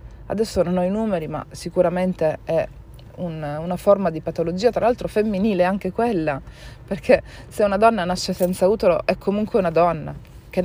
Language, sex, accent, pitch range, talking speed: Italian, female, native, 160-195 Hz, 165 wpm